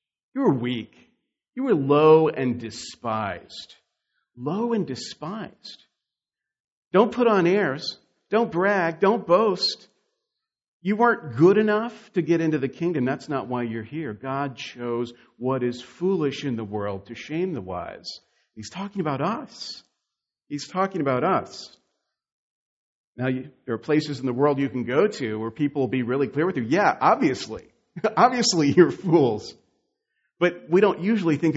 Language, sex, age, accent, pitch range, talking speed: English, male, 50-69, American, 125-190 Hz, 155 wpm